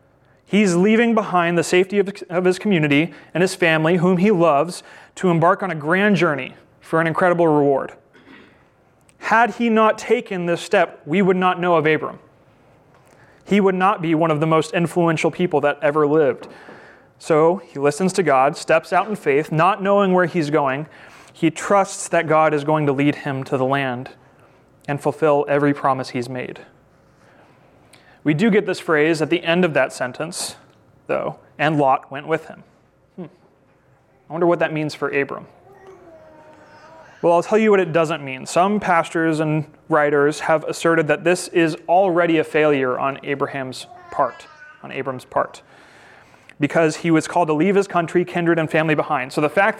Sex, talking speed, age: male, 175 wpm, 30-49